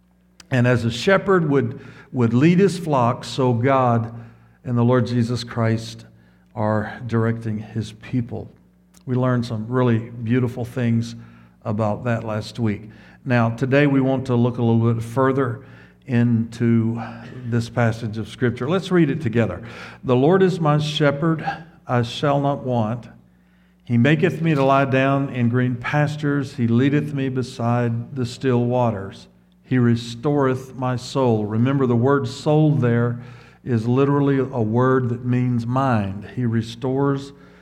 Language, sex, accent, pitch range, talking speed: English, male, American, 115-135 Hz, 145 wpm